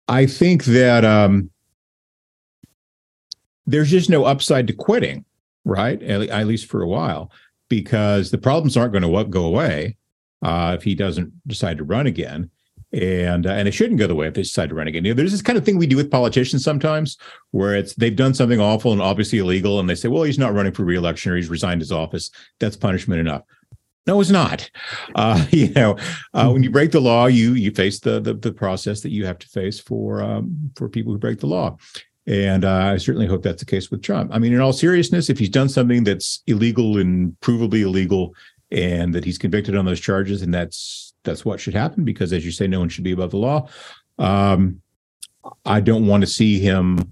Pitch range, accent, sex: 95-120 Hz, American, male